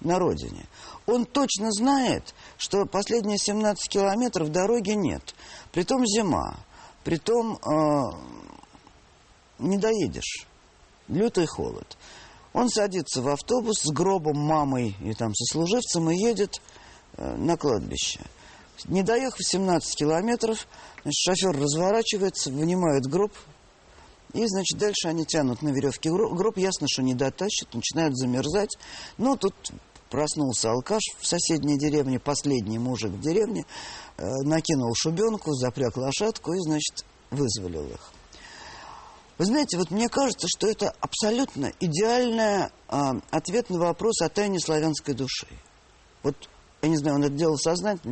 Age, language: 50-69, Russian